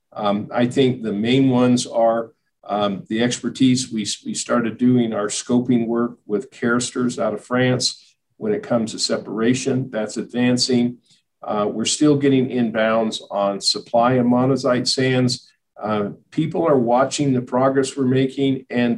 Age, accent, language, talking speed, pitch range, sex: 50-69, American, English, 150 wpm, 115-135 Hz, male